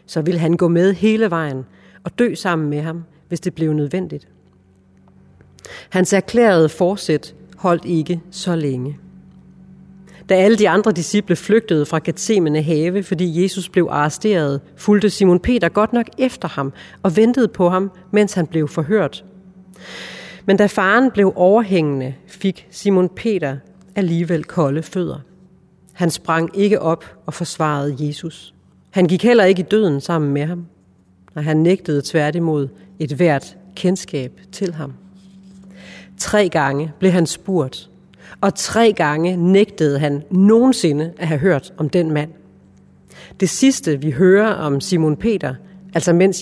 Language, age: Danish, 40-59